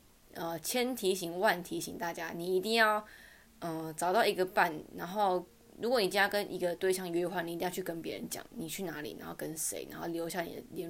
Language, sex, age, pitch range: Chinese, female, 20-39, 170-205 Hz